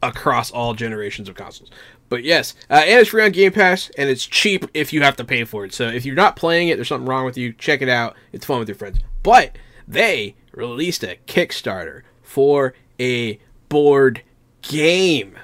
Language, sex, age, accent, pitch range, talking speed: English, male, 20-39, American, 120-145 Hz, 200 wpm